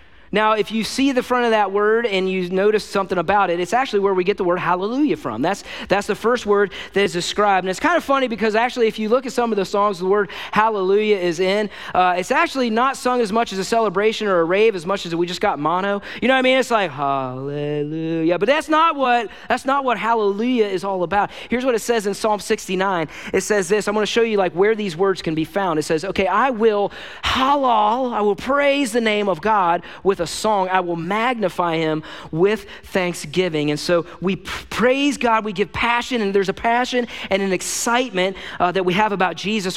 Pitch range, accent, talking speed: 180-225 Hz, American, 235 wpm